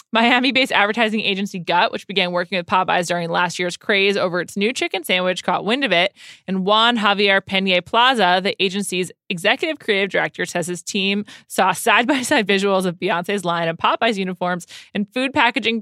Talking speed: 180 wpm